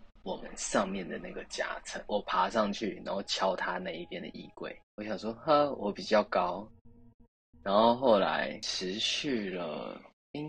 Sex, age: male, 20-39